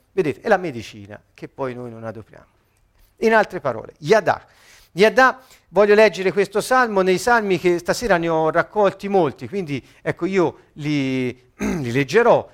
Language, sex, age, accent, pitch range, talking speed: Italian, male, 50-69, native, 125-190 Hz, 155 wpm